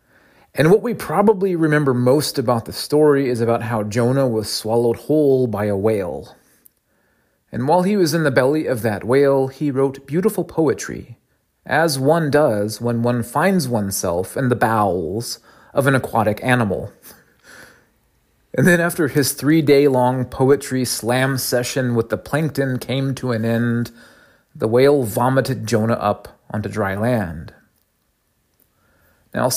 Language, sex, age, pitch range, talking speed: English, male, 30-49, 110-140 Hz, 145 wpm